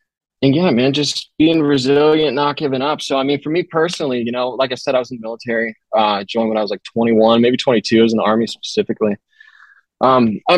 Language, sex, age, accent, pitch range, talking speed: English, male, 20-39, American, 105-125 Hz, 240 wpm